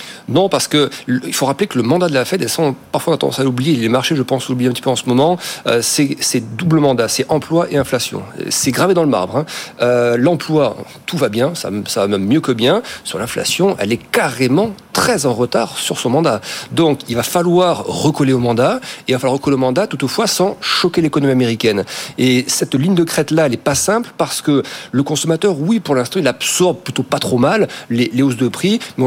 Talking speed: 235 wpm